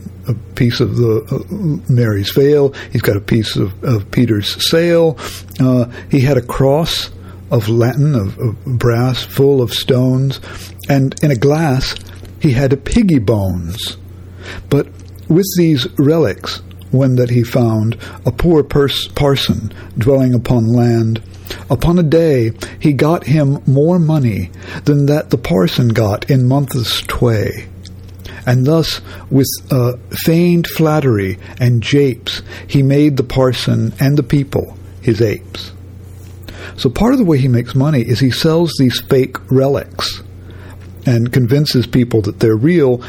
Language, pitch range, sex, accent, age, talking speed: English, 100-140 Hz, male, American, 60-79, 145 wpm